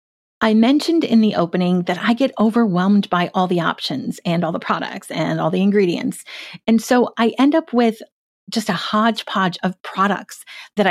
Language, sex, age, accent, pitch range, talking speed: English, female, 40-59, American, 185-245 Hz, 180 wpm